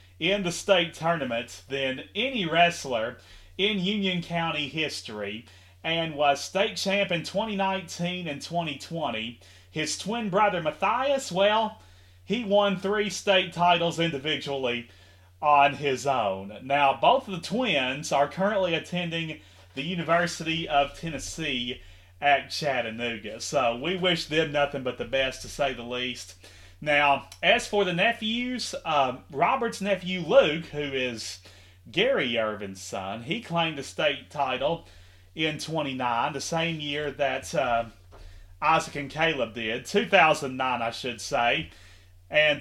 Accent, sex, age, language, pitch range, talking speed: American, male, 30-49, English, 115-175 Hz, 130 wpm